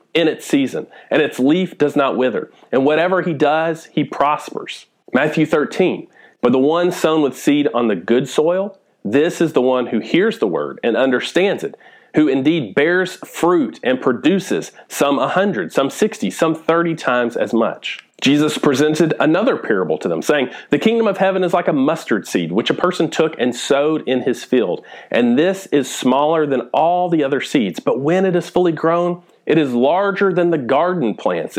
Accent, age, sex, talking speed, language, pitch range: American, 40-59, male, 190 wpm, English, 135-175 Hz